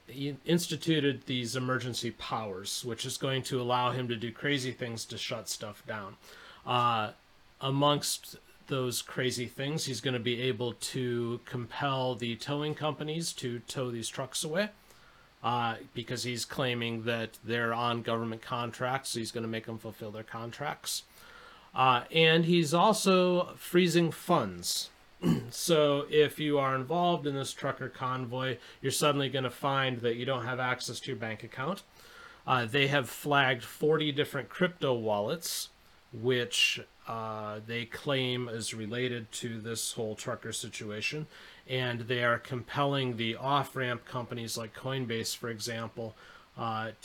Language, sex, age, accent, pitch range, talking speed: English, male, 30-49, American, 115-140 Hz, 150 wpm